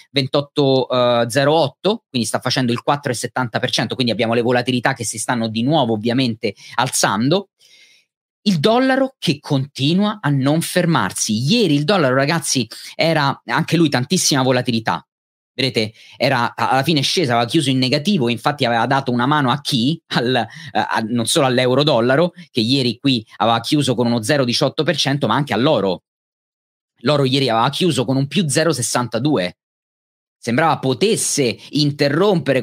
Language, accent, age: Italian, native, 30-49